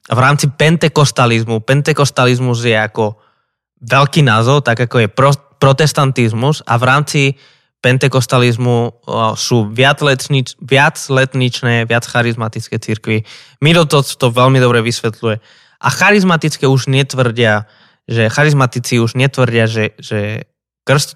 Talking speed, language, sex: 120 wpm, Slovak, male